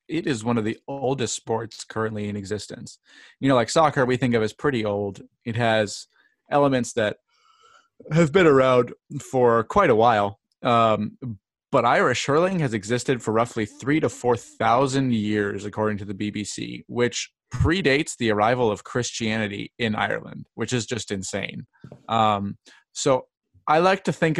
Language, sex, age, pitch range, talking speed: English, male, 20-39, 110-140 Hz, 160 wpm